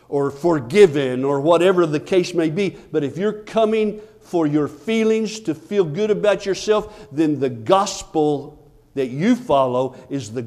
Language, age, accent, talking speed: English, 50-69, American, 160 wpm